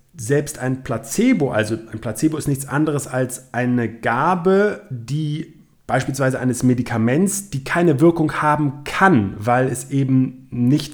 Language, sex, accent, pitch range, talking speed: German, male, German, 110-135 Hz, 135 wpm